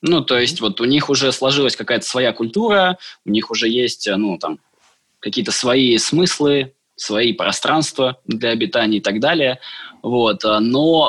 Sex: male